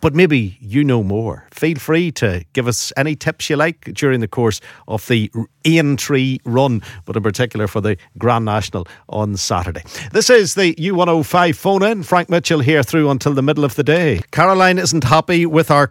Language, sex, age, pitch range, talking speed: English, male, 50-69, 110-140 Hz, 190 wpm